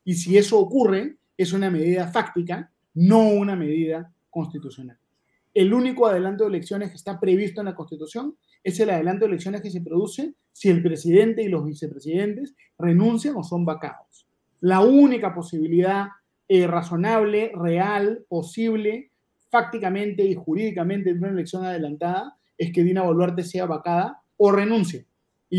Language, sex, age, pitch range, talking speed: Spanish, male, 30-49, 165-205 Hz, 150 wpm